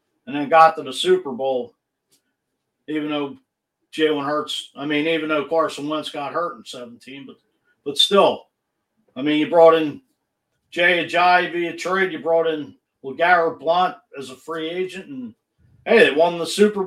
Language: English